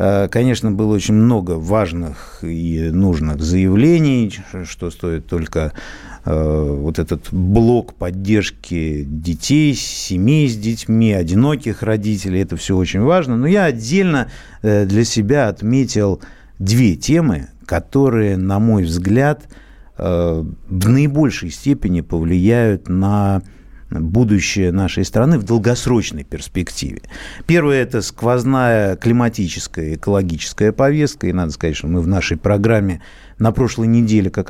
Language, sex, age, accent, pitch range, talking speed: Russian, male, 50-69, native, 90-120 Hz, 115 wpm